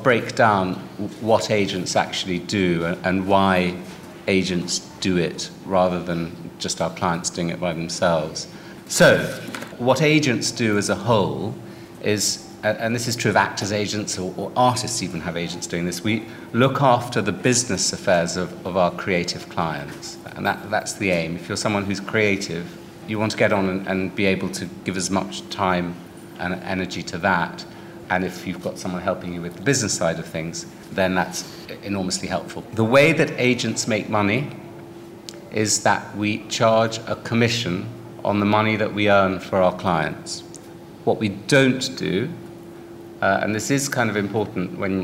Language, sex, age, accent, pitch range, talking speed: English, male, 40-59, British, 90-110 Hz, 175 wpm